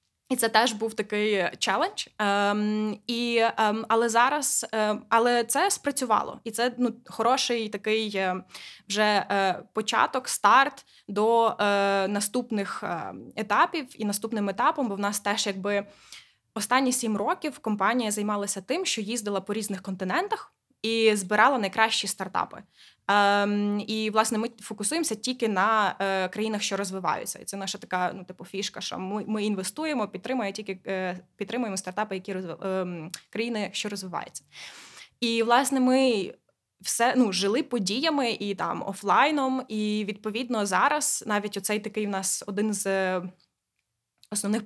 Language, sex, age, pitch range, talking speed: Ukrainian, female, 20-39, 195-235 Hz, 140 wpm